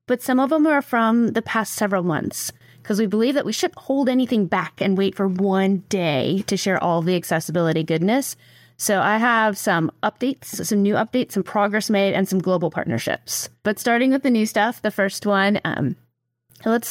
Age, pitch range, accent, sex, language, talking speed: 30-49, 180-225 Hz, American, female, English, 200 wpm